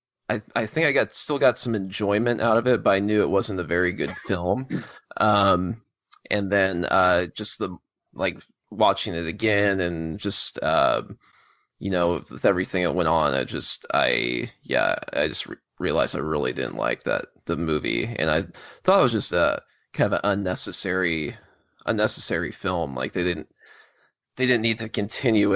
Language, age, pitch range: English, 20-39, 90-110 Hz